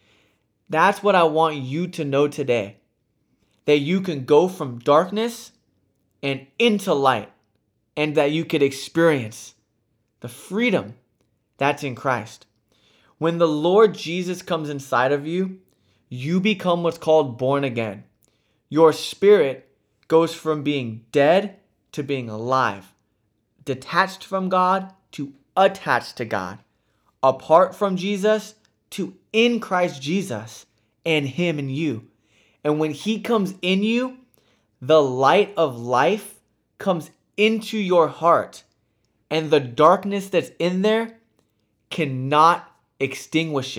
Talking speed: 125 wpm